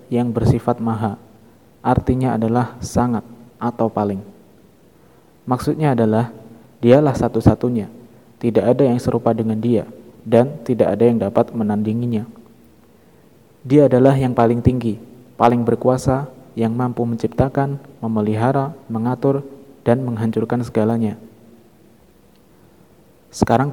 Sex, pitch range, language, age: male, 110-125 Hz, Indonesian, 20-39